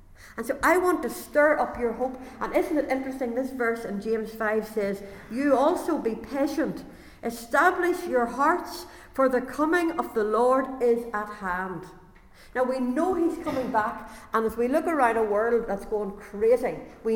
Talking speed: 180 wpm